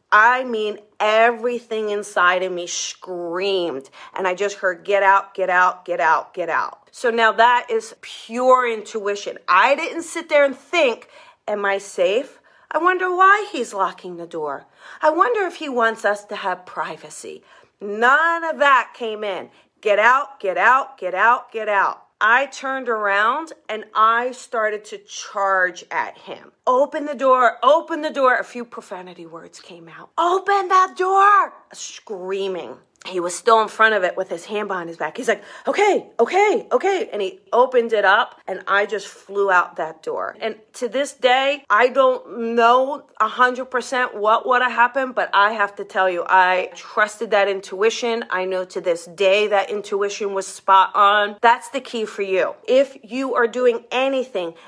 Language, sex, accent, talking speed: English, female, American, 175 wpm